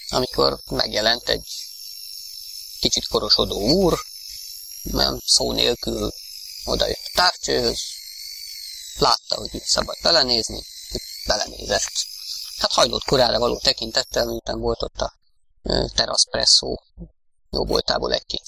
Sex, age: male, 20-39